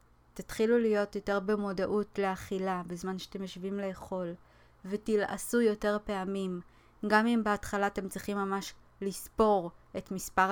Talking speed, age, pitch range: 120 wpm, 20-39, 190-210 Hz